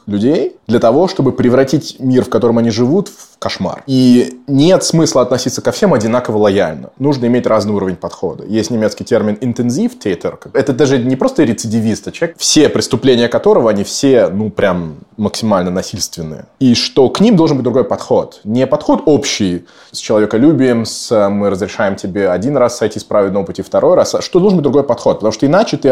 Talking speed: 180 wpm